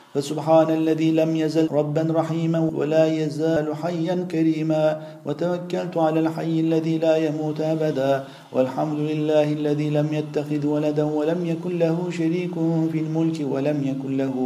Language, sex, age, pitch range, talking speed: Turkish, male, 50-69, 150-160 Hz, 135 wpm